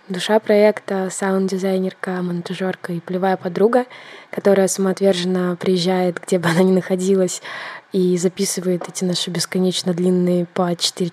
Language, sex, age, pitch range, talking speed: Russian, female, 20-39, 175-195 Hz, 125 wpm